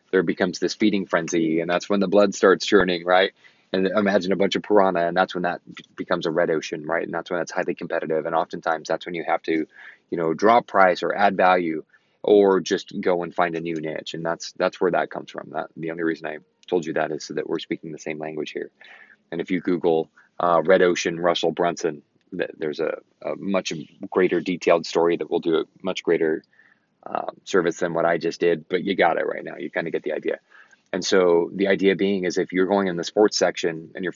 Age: 20-39